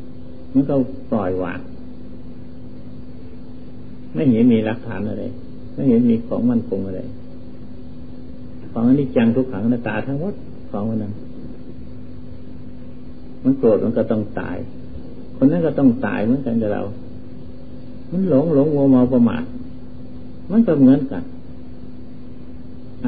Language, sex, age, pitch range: Thai, male, 50-69, 105-130 Hz